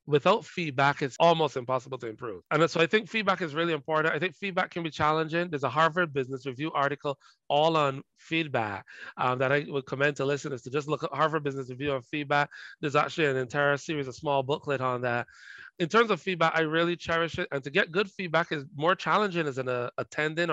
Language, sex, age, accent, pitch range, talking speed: English, male, 30-49, American, 140-175 Hz, 220 wpm